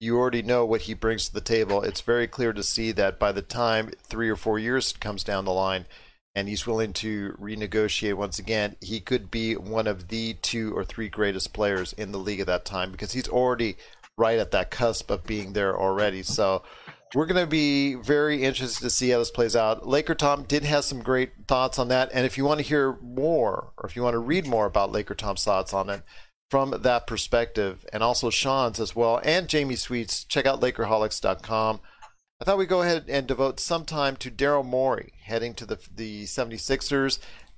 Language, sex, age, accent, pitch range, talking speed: English, male, 40-59, American, 105-130 Hz, 215 wpm